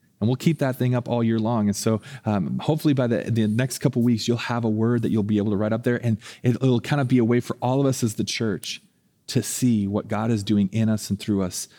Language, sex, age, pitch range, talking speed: English, male, 30-49, 110-130 Hz, 295 wpm